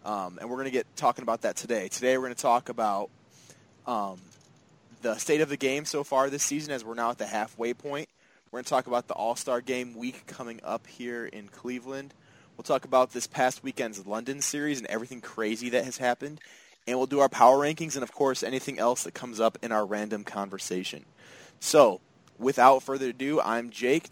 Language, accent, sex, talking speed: English, American, male, 210 wpm